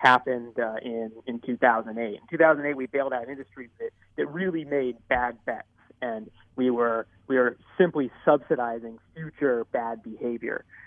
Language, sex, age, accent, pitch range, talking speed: English, male, 30-49, American, 120-150 Hz, 150 wpm